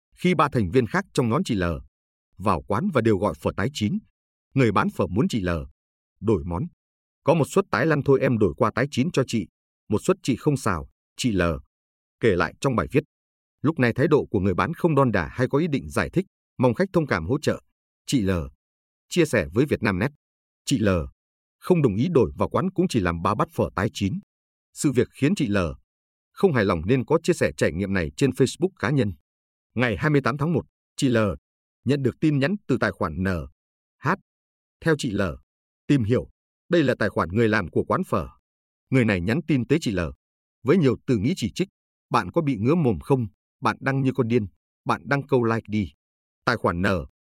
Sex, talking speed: male, 220 wpm